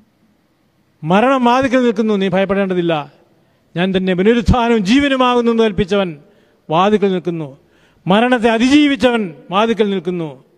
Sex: male